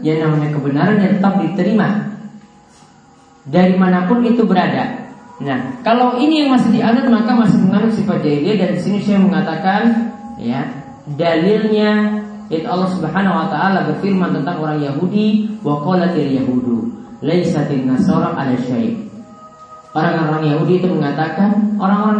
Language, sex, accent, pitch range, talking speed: Indonesian, male, native, 160-225 Hz, 130 wpm